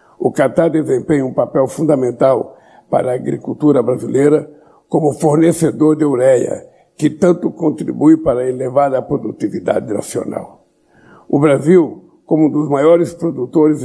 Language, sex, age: Portuguese, male, 60-79